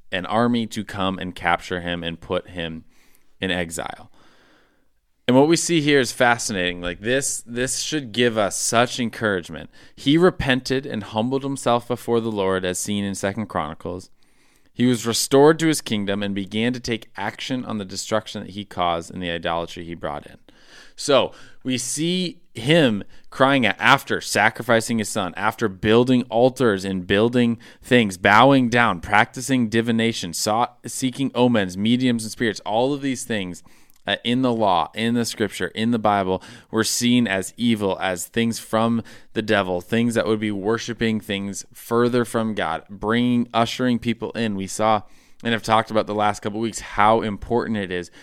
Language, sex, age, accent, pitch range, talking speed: English, male, 20-39, American, 95-120 Hz, 170 wpm